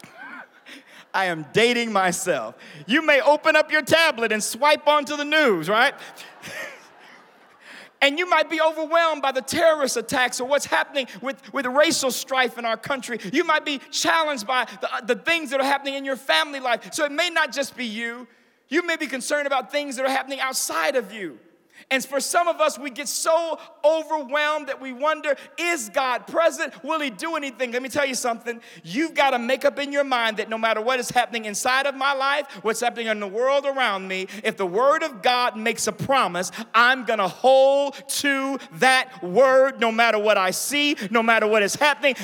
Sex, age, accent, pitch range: male, 40-59, American, 235-300 Hz